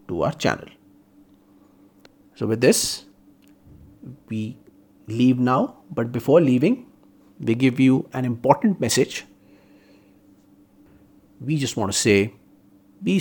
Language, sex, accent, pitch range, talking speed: Hindi, male, native, 100-125 Hz, 110 wpm